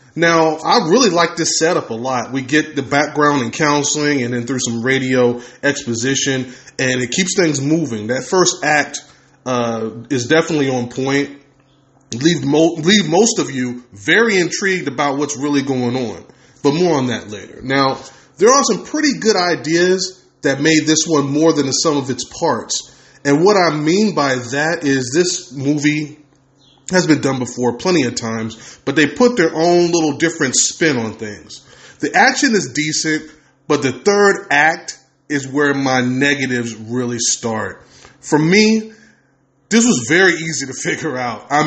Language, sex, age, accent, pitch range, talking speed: English, male, 20-39, American, 130-160 Hz, 170 wpm